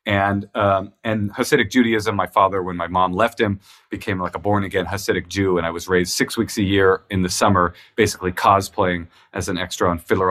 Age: 40-59